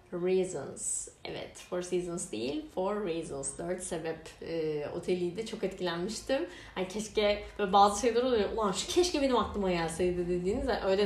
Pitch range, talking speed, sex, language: 180-215 Hz, 145 wpm, female, Turkish